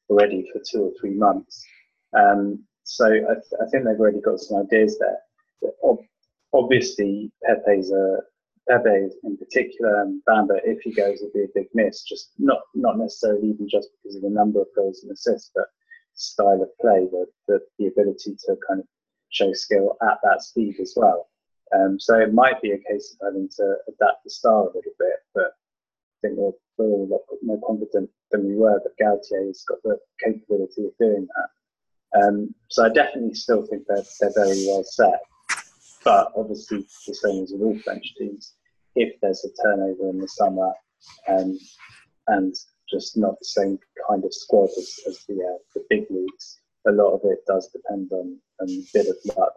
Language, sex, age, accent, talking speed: English, male, 30-49, British, 190 wpm